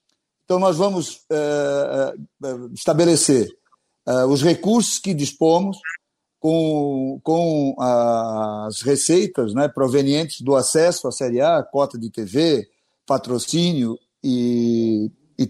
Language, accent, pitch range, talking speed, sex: Portuguese, Brazilian, 125-165 Hz, 95 wpm, male